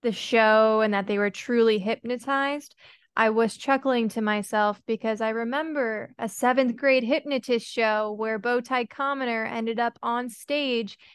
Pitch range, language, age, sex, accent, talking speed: 220-260 Hz, English, 20-39, female, American, 150 wpm